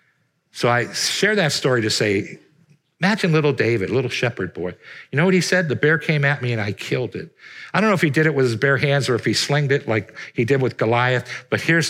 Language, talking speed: English, 250 wpm